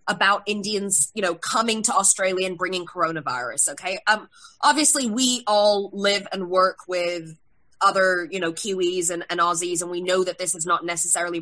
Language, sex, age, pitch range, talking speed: English, female, 20-39, 175-220 Hz, 180 wpm